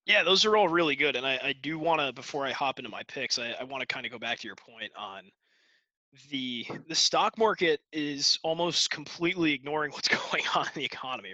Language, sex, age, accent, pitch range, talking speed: English, male, 20-39, American, 135-180 Hz, 235 wpm